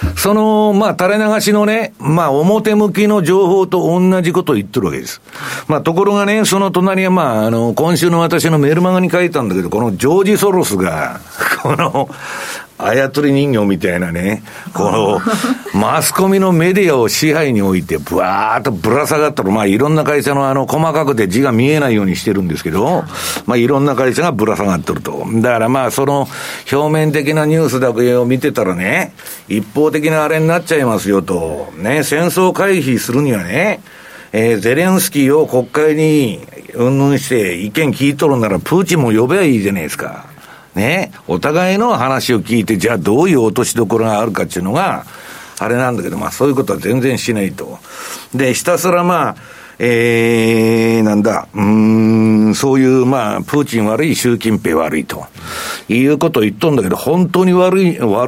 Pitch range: 120-180 Hz